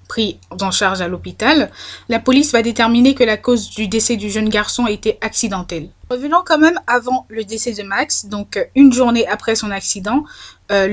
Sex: female